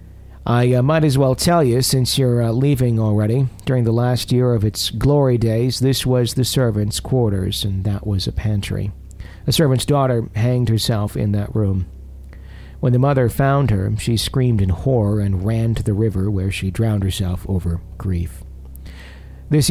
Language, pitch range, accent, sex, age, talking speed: English, 95-125 Hz, American, male, 50-69, 180 wpm